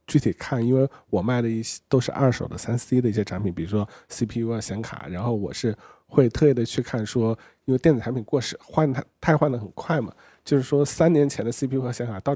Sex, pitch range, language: male, 100-130 Hz, Chinese